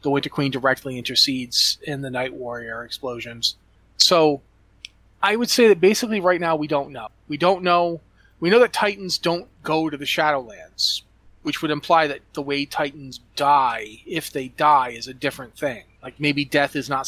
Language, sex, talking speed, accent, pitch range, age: English, male, 185 wpm, American, 130-160 Hz, 30-49